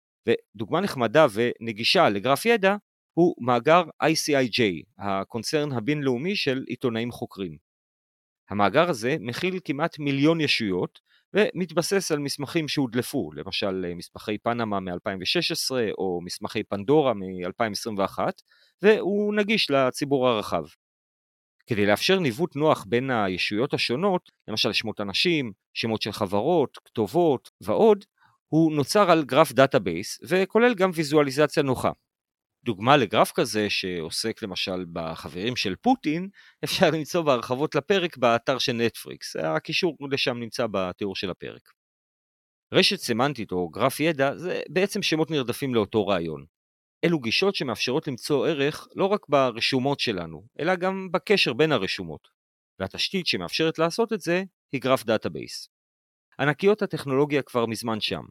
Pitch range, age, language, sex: 105-165 Hz, 40-59, Hebrew, male